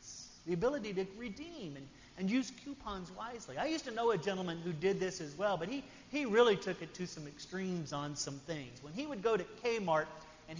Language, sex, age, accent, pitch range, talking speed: English, male, 40-59, American, 150-210 Hz, 220 wpm